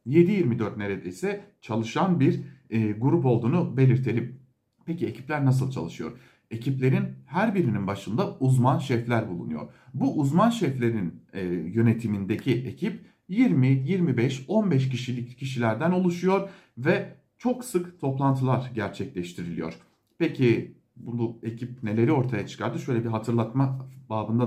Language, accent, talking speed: German, Turkish, 105 wpm